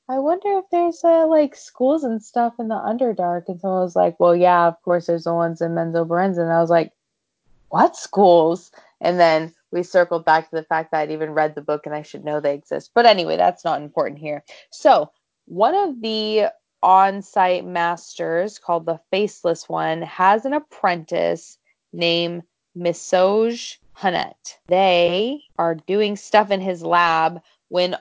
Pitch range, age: 170-210 Hz, 20-39